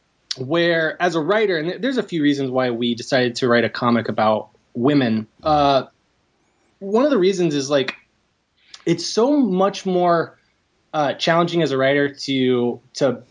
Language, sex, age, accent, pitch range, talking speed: English, male, 20-39, American, 135-180 Hz, 160 wpm